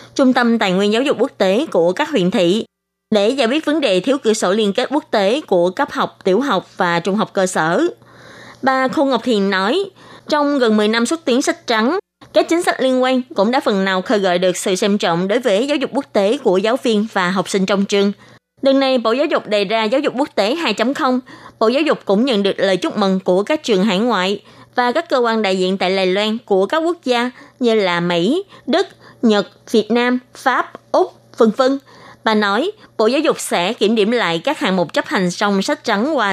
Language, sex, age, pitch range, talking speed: Vietnamese, female, 20-39, 195-265 Hz, 240 wpm